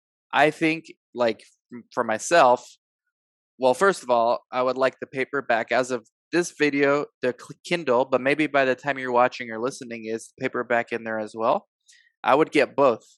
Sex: male